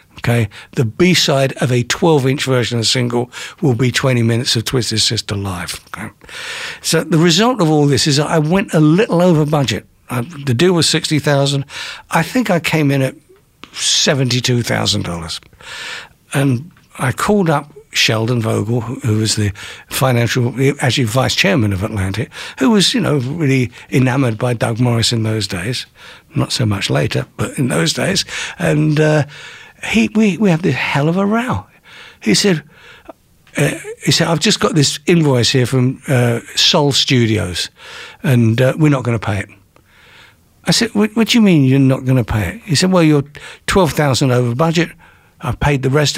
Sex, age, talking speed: male, 60-79, 175 wpm